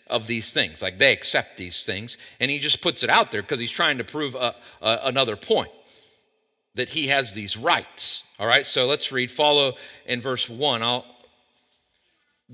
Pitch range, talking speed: 130-195 Hz, 175 wpm